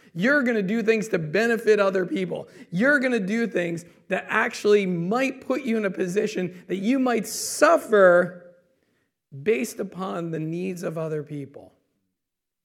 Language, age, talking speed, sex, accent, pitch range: English, 40-59, 155 wpm, male, American, 175-220 Hz